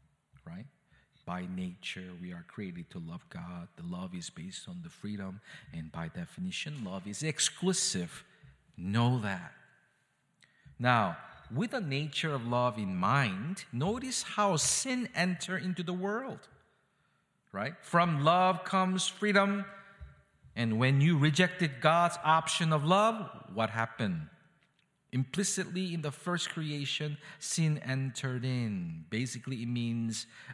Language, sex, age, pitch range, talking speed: English, male, 50-69, 115-175 Hz, 130 wpm